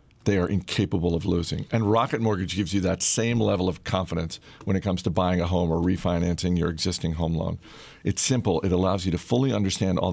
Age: 50-69